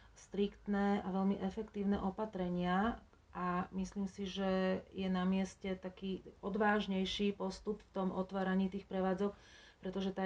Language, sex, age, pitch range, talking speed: Slovak, female, 30-49, 185-195 Hz, 130 wpm